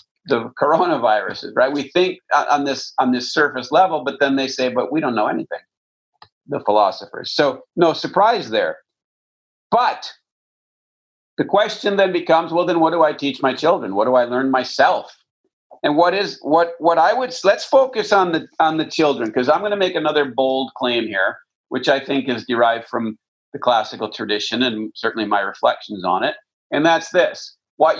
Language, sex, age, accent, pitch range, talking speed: English, male, 50-69, American, 135-190 Hz, 185 wpm